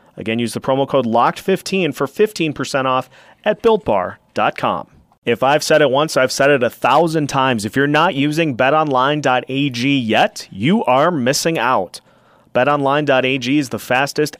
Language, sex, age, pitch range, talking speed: English, male, 30-49, 125-160 Hz, 150 wpm